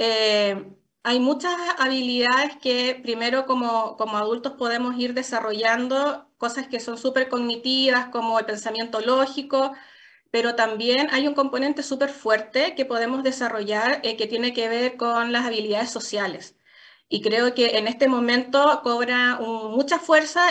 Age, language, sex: 20-39, Spanish, female